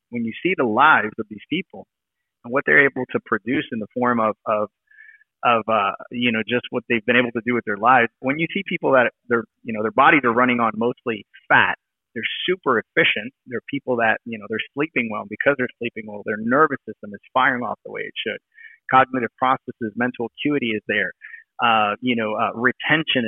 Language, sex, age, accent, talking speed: English, male, 30-49, American, 220 wpm